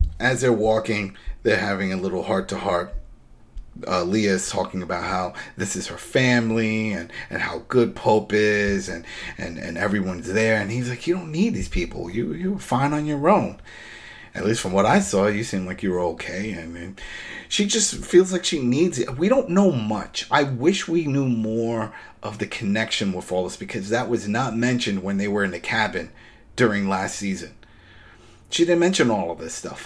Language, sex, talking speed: English, male, 200 wpm